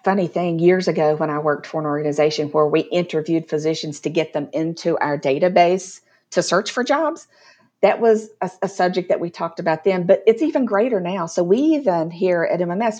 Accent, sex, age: American, female, 50-69